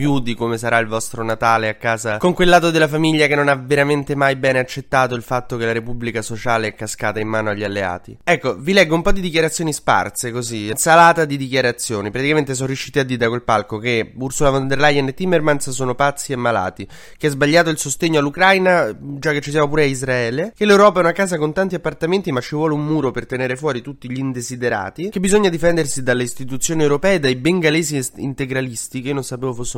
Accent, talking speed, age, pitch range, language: native, 225 wpm, 20-39, 115-150 Hz, Italian